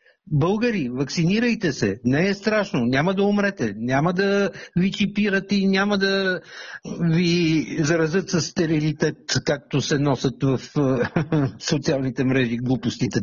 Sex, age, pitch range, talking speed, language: male, 60-79, 145-200 Hz, 120 wpm, Bulgarian